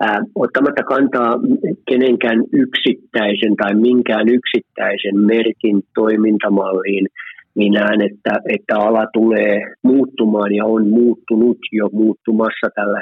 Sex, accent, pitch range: male, native, 100-115 Hz